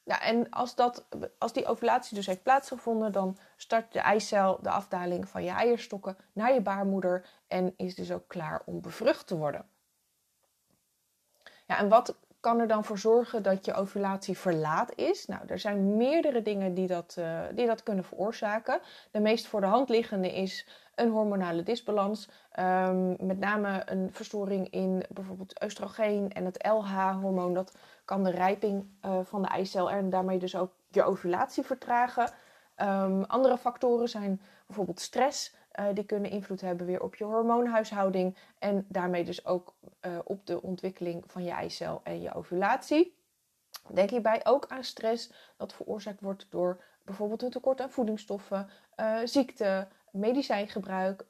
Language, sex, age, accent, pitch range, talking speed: Dutch, female, 20-39, Dutch, 190-230 Hz, 160 wpm